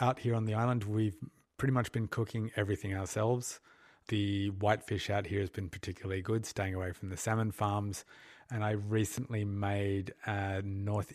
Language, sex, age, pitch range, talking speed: English, male, 30-49, 95-110 Hz, 180 wpm